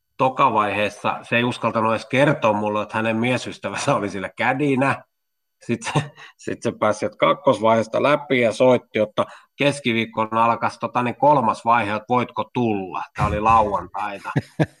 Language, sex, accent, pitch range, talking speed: Finnish, male, native, 105-130 Hz, 145 wpm